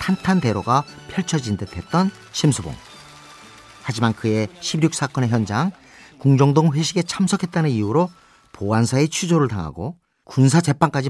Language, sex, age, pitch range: Korean, male, 40-59, 110-165 Hz